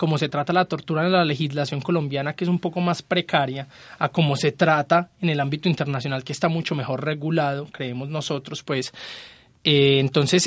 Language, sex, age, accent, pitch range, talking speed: Spanish, male, 20-39, Colombian, 135-165 Hz, 190 wpm